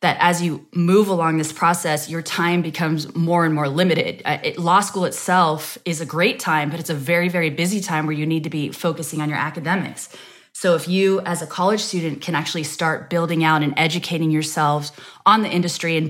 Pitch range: 155-180 Hz